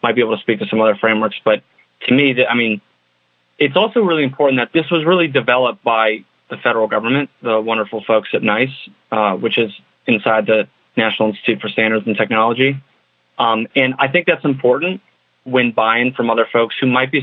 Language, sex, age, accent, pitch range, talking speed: English, male, 30-49, American, 110-135 Hz, 200 wpm